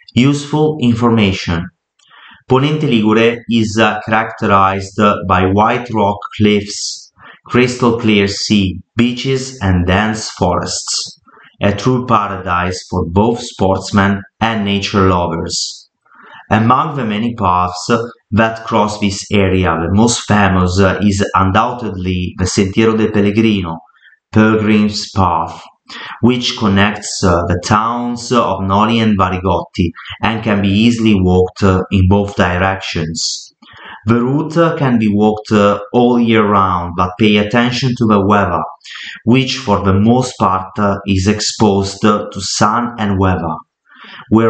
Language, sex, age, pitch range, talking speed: English, male, 30-49, 95-115 Hz, 130 wpm